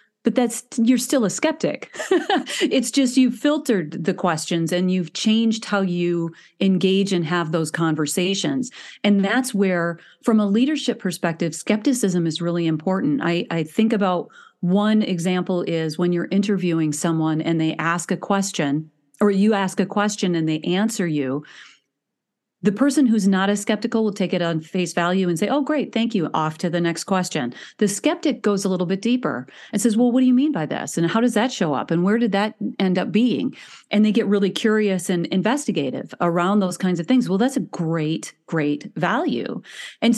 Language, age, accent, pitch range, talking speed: English, 40-59, American, 170-220 Hz, 195 wpm